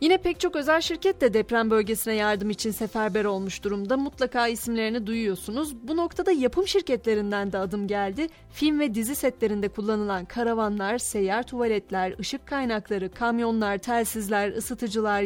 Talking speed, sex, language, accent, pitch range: 140 wpm, female, Turkish, native, 205-255 Hz